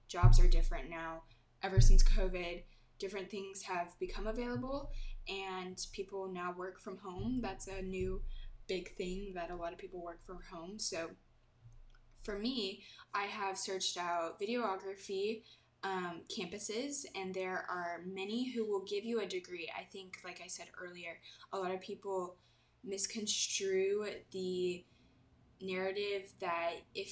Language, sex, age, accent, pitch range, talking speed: English, female, 20-39, American, 175-205 Hz, 145 wpm